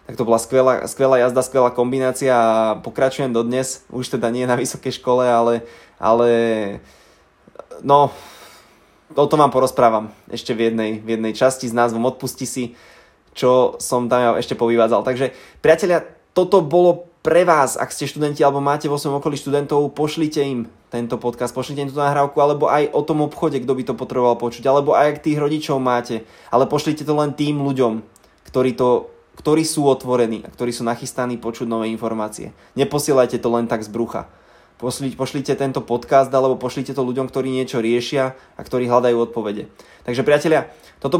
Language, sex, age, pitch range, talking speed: Slovak, male, 20-39, 120-145 Hz, 175 wpm